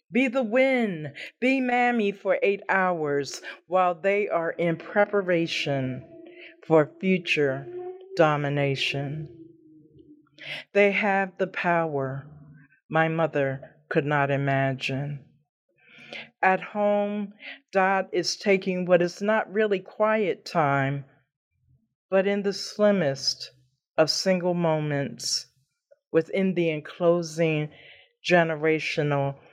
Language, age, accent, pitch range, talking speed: English, 40-59, American, 145-210 Hz, 95 wpm